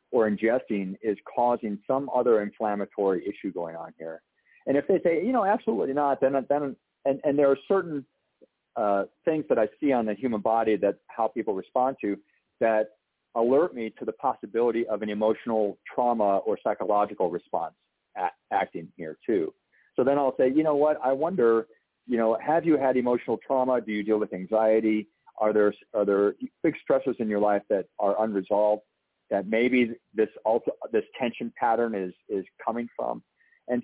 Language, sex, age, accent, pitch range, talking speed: English, male, 50-69, American, 105-140 Hz, 180 wpm